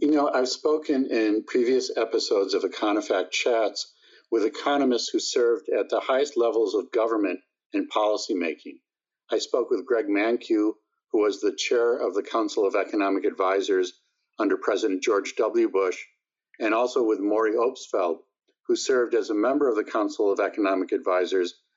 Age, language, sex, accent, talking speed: 50-69, English, male, American, 160 wpm